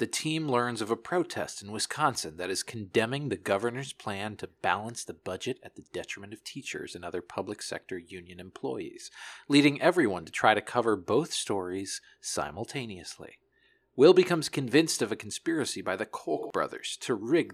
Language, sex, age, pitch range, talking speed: English, male, 40-59, 115-160 Hz, 170 wpm